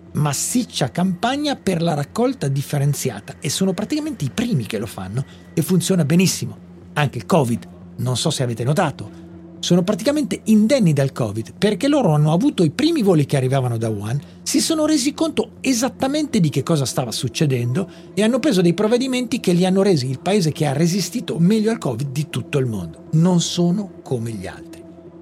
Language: Italian